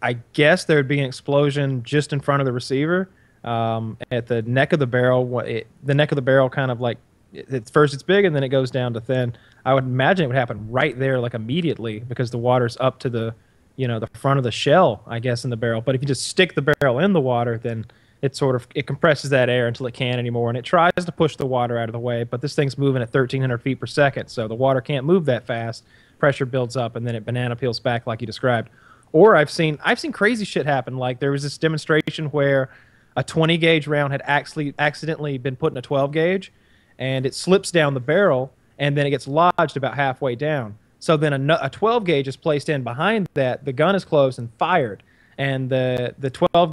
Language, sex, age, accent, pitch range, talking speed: English, male, 20-39, American, 125-155 Hz, 245 wpm